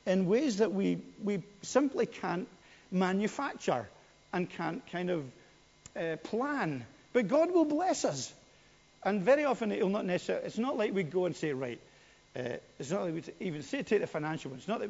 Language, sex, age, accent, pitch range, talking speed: English, male, 50-69, British, 140-200 Hz, 190 wpm